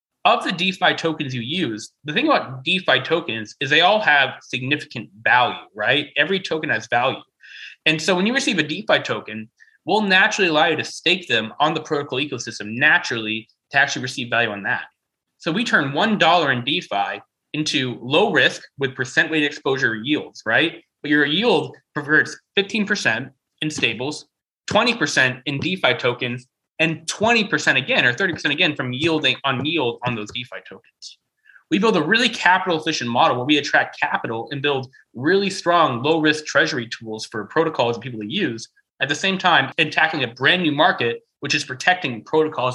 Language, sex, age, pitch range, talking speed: English, male, 20-39, 120-160 Hz, 180 wpm